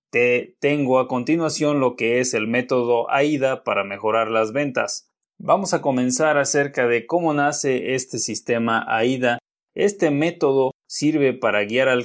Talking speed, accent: 150 wpm, Mexican